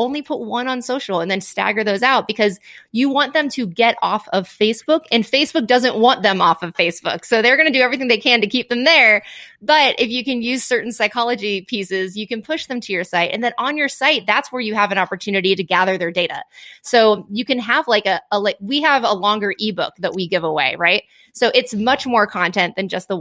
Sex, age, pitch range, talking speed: female, 20-39, 195-250 Hz, 245 wpm